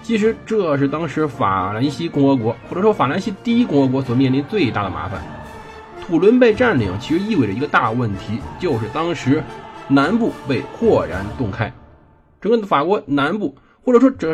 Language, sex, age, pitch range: Chinese, male, 20-39, 120-170 Hz